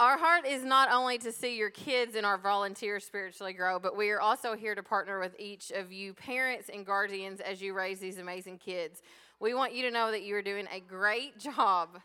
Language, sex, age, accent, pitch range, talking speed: English, female, 20-39, American, 195-230 Hz, 230 wpm